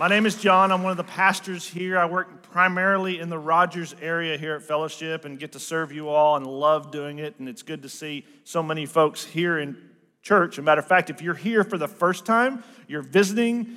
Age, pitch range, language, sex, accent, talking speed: 40-59, 155-195 Hz, English, male, American, 240 wpm